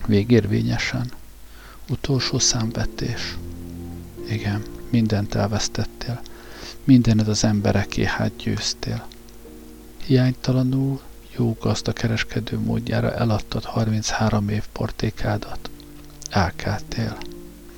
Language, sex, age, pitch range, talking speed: Hungarian, male, 50-69, 110-135 Hz, 70 wpm